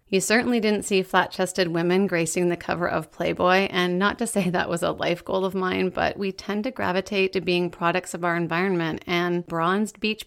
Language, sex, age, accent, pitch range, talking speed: English, female, 30-49, American, 175-200 Hz, 210 wpm